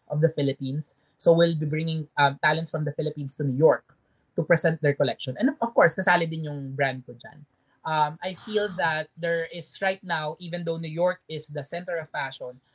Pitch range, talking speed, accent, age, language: 145-170 Hz, 205 wpm, native, 20-39, Filipino